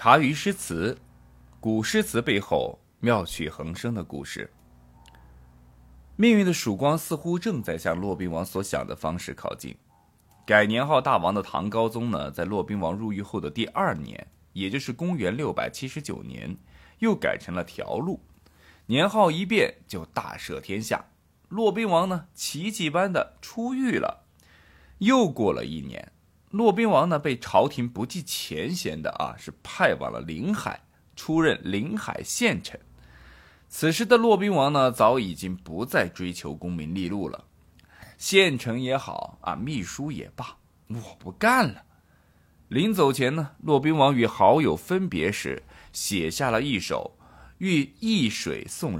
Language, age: Chinese, 20-39